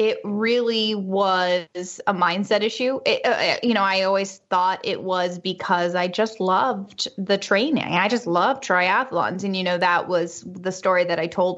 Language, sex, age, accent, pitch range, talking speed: English, female, 20-39, American, 180-210 Hz, 180 wpm